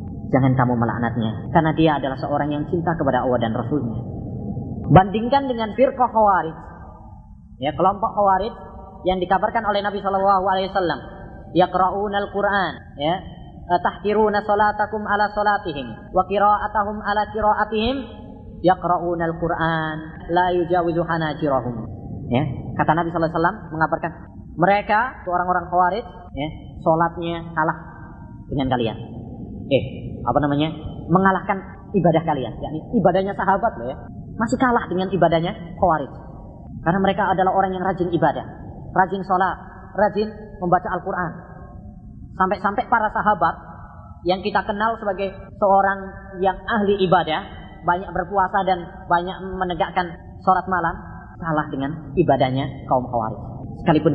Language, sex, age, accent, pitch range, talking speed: Indonesian, female, 20-39, native, 140-195 Hz, 120 wpm